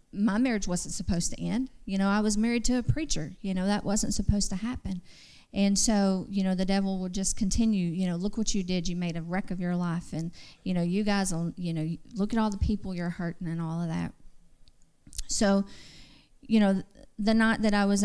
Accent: American